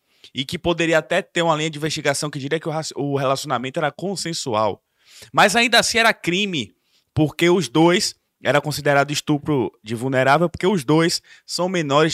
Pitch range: 130-170 Hz